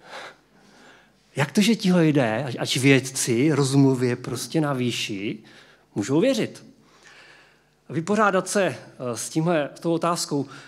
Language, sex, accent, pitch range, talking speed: Czech, male, native, 130-180 Hz, 95 wpm